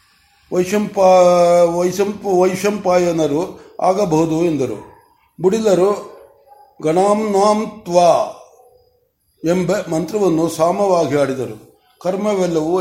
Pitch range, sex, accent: 160-200 Hz, male, native